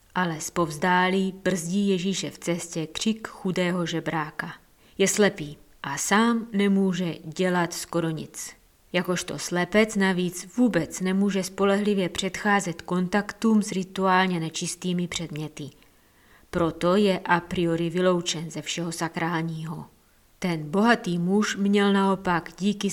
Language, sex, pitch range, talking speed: Czech, female, 165-195 Hz, 115 wpm